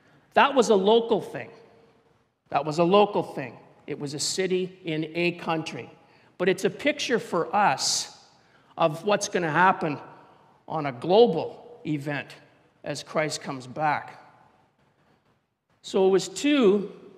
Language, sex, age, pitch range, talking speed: English, male, 50-69, 160-210 Hz, 140 wpm